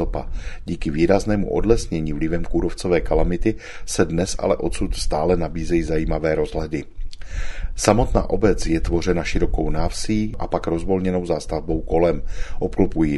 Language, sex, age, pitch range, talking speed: Czech, male, 40-59, 85-95 Hz, 120 wpm